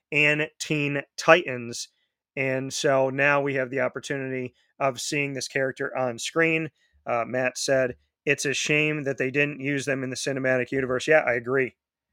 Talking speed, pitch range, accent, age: 170 wpm, 125-145 Hz, American, 40-59